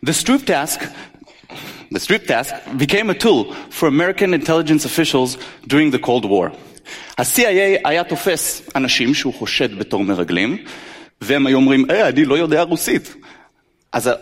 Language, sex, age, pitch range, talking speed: Hebrew, male, 30-49, 150-210 Hz, 145 wpm